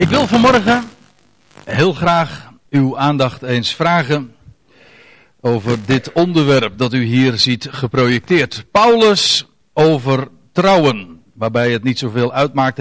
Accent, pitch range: Dutch, 125-175 Hz